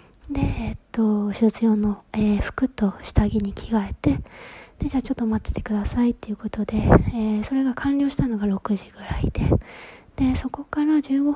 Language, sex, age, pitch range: Japanese, female, 20-39, 210-265 Hz